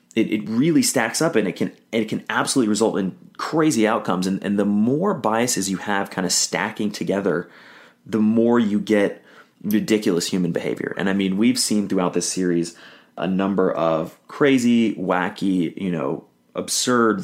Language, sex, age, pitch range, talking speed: English, male, 30-49, 90-115 Hz, 170 wpm